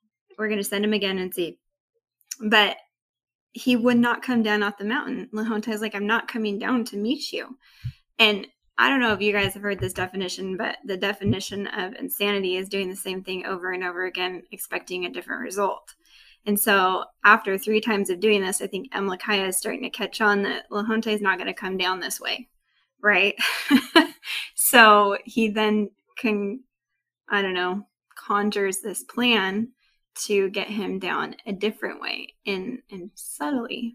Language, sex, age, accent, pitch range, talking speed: English, female, 20-39, American, 200-245 Hz, 185 wpm